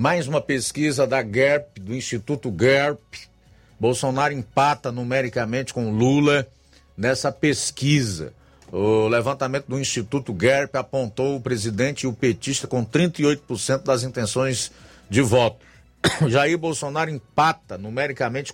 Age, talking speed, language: 50-69, 115 wpm, Portuguese